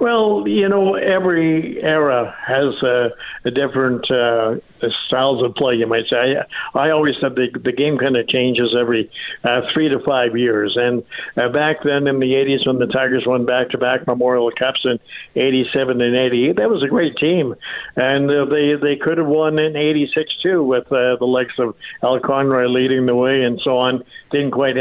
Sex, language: male, English